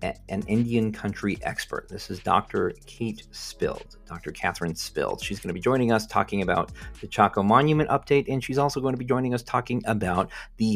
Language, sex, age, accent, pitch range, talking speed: English, male, 40-59, American, 95-125 Hz, 195 wpm